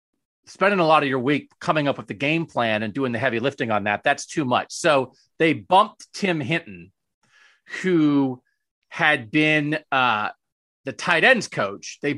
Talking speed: 175 wpm